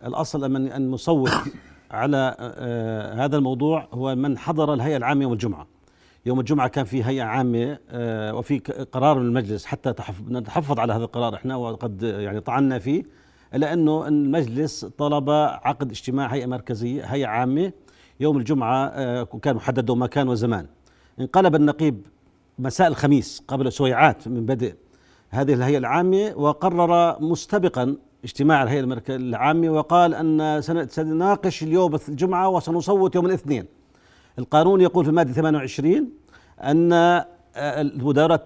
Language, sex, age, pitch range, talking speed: Arabic, male, 50-69, 125-155 Hz, 125 wpm